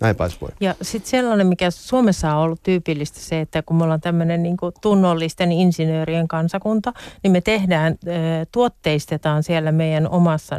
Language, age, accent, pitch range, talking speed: Finnish, 40-59, native, 155-185 Hz, 140 wpm